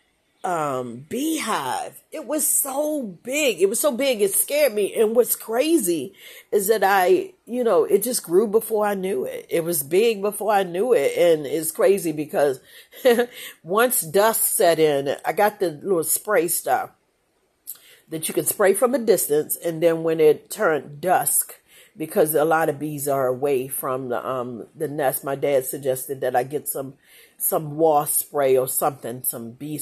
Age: 40-59